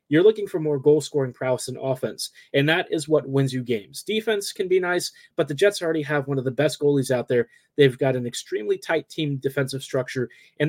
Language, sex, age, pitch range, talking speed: English, male, 30-49, 140-170 Hz, 225 wpm